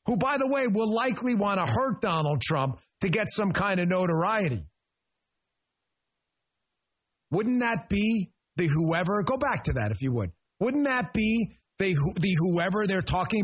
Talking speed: 165 wpm